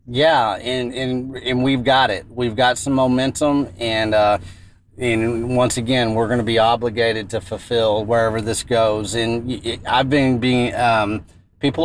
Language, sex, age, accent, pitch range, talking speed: English, male, 30-49, American, 105-130 Hz, 160 wpm